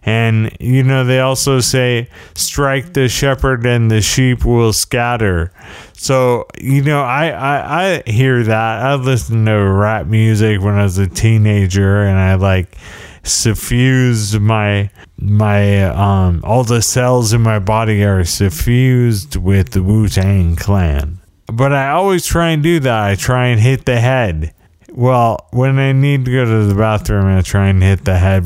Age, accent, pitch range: 30-49, American, 105-135 Hz